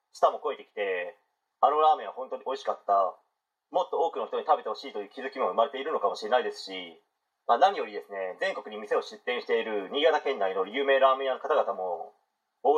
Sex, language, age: male, Japanese, 40-59